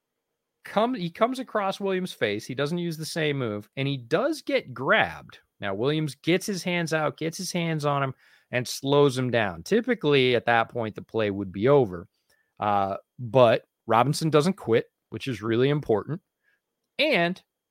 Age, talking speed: 30-49, 175 wpm